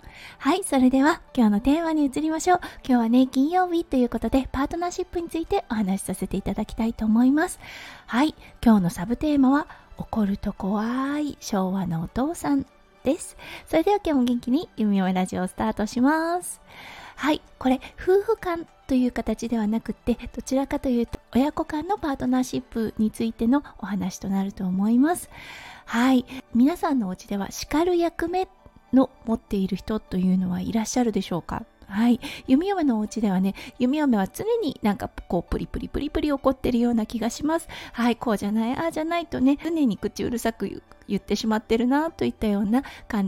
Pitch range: 210-290 Hz